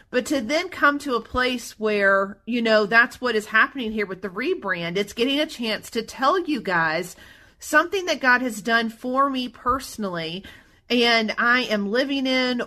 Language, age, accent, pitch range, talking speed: English, 40-59, American, 205-245 Hz, 185 wpm